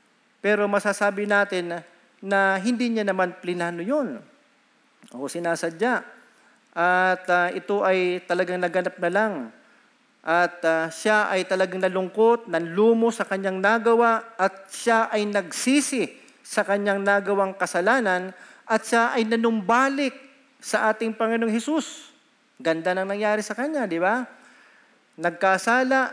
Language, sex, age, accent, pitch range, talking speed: Filipino, male, 40-59, native, 195-235 Hz, 120 wpm